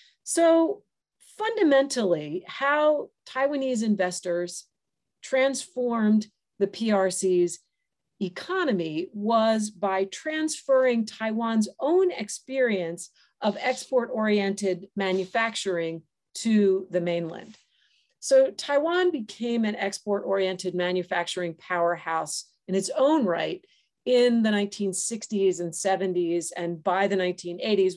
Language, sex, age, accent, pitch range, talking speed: English, female, 40-59, American, 180-230 Hz, 90 wpm